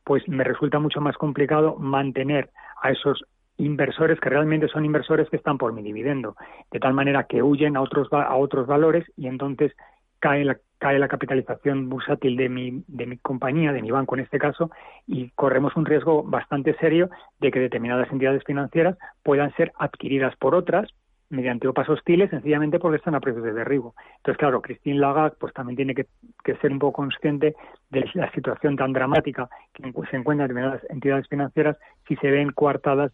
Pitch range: 130-150 Hz